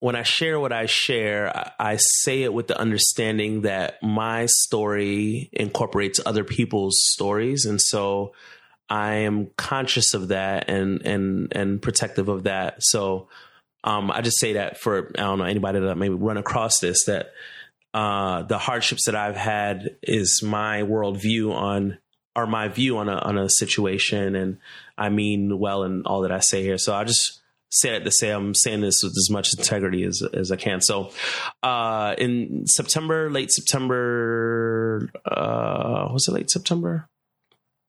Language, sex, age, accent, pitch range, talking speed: English, male, 30-49, American, 100-120 Hz, 170 wpm